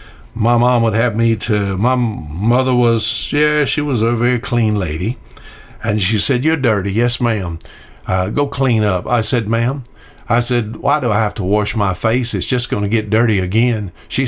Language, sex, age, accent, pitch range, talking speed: English, male, 60-79, American, 105-130 Hz, 200 wpm